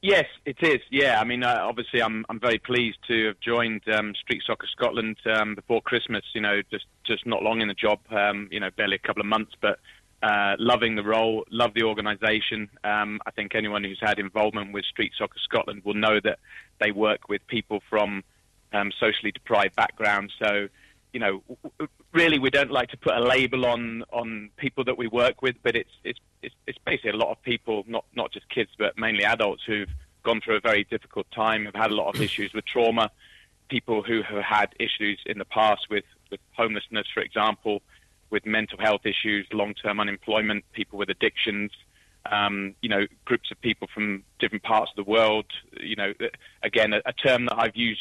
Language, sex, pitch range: English, male, 105-115 Hz